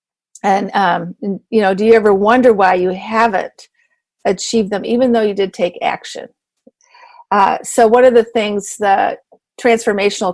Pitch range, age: 190-230 Hz, 50-69